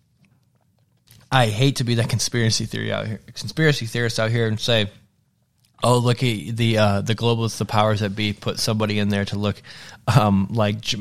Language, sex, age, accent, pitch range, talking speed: English, male, 20-39, American, 95-120 Hz, 180 wpm